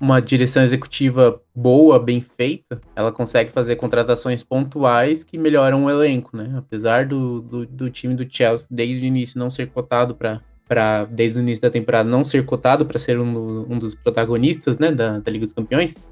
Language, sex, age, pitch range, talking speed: Portuguese, male, 20-39, 115-140 Hz, 190 wpm